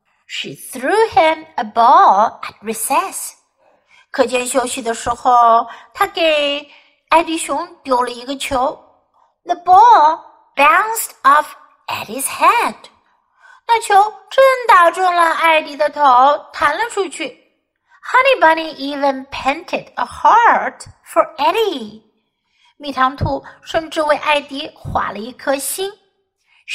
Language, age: Chinese, 60-79